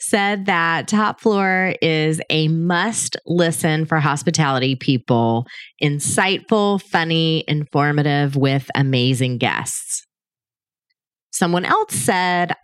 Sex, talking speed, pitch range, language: female, 90 wpm, 155-205 Hz, English